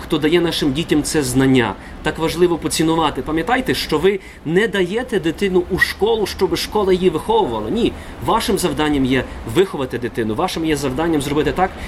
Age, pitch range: 30-49, 125-160 Hz